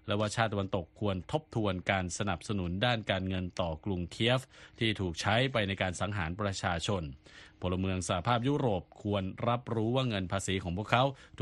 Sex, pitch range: male, 90-115 Hz